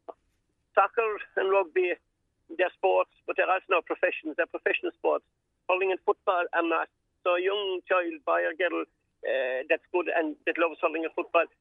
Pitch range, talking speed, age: 165-205 Hz, 175 wpm, 50-69